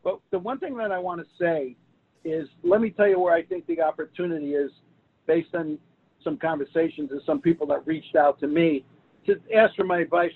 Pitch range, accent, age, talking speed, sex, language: 155-185 Hz, American, 50-69, 215 wpm, male, English